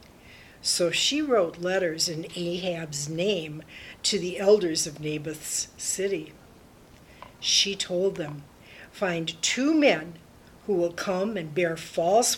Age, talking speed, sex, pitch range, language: 60-79, 120 wpm, female, 165-195 Hz, English